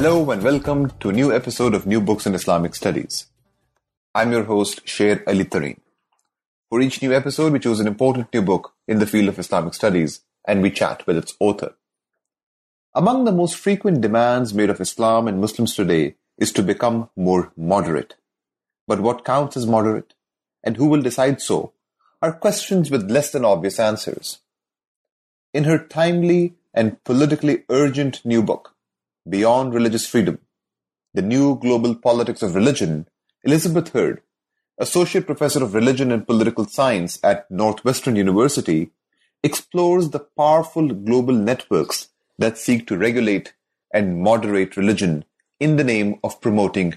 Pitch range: 105-150 Hz